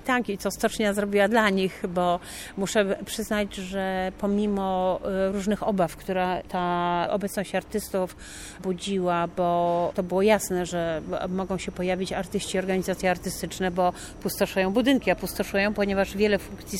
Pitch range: 185-215 Hz